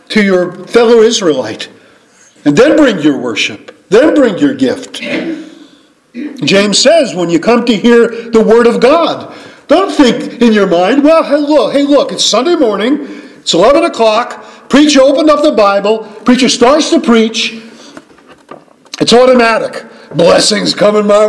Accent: American